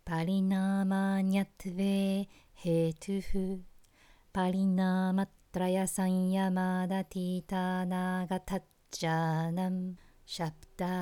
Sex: female